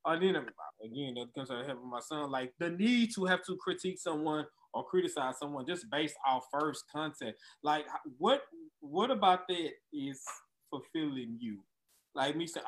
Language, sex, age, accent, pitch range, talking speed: English, male, 20-39, American, 145-195 Hz, 175 wpm